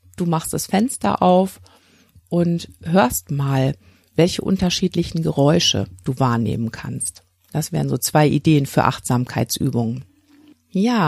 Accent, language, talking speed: German, German, 120 wpm